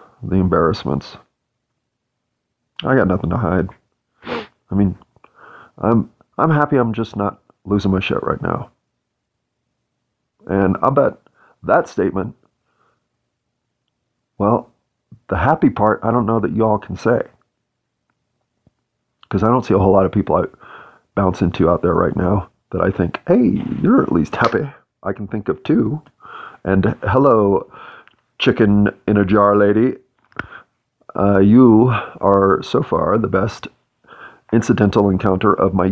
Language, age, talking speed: English, 40-59, 140 wpm